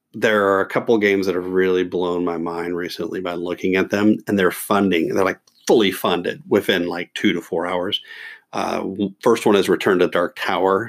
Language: English